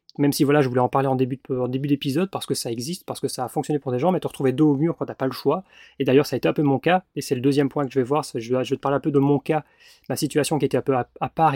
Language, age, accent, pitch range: French, 20-39, French, 130-160 Hz